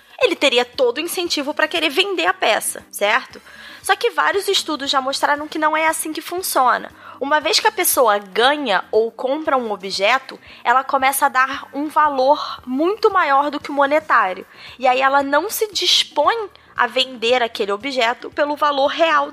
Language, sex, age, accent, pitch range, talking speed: Portuguese, female, 20-39, Brazilian, 235-320 Hz, 180 wpm